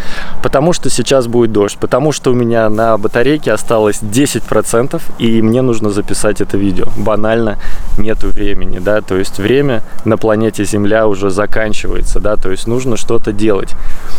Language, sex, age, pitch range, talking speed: Russian, male, 20-39, 105-125 Hz, 155 wpm